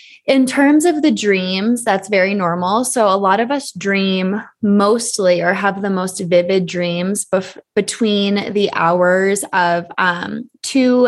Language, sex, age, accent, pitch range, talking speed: English, female, 20-39, American, 180-220 Hz, 150 wpm